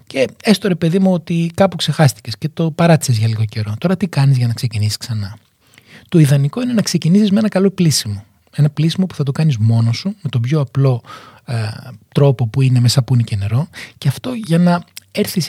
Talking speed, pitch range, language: 210 wpm, 120-165 Hz, Greek